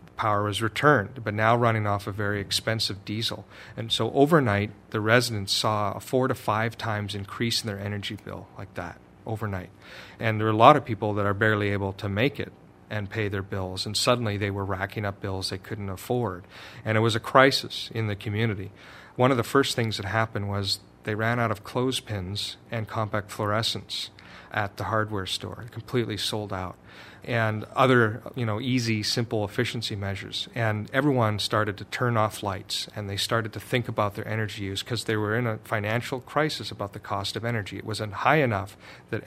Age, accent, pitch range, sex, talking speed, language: 40-59, American, 100-115 Hz, male, 200 wpm, English